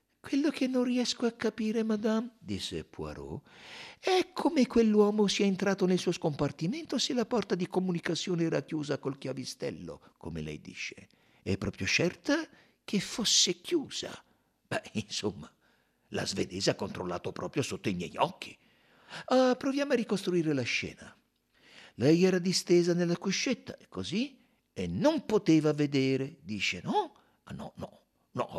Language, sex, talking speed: Italian, male, 145 wpm